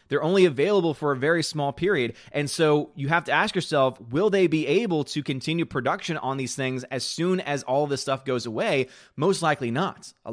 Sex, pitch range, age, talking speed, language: male, 125-150 Hz, 30-49, 215 wpm, English